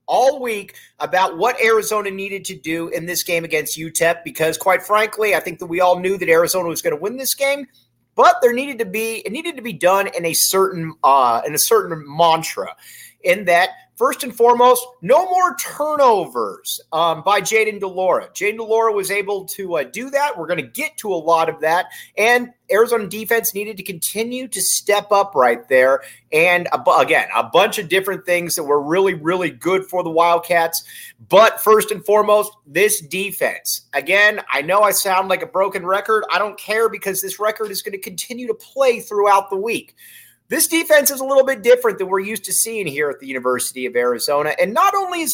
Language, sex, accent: English, male, American